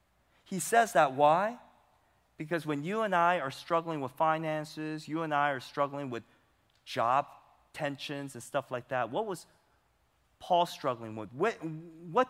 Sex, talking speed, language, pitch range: male, 155 wpm, English, 105-150 Hz